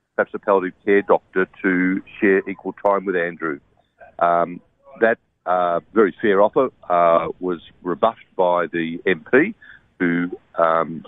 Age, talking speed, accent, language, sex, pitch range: 50-69, 135 wpm, Australian, English, male, 85-100 Hz